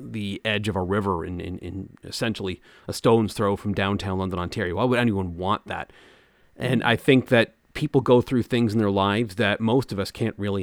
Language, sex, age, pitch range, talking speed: English, male, 30-49, 100-125 Hz, 215 wpm